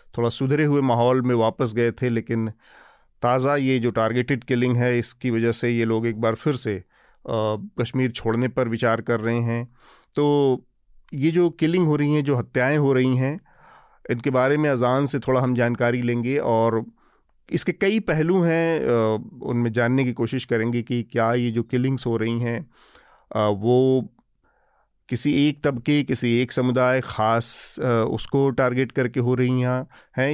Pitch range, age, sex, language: 115-135 Hz, 40-59, male, Hindi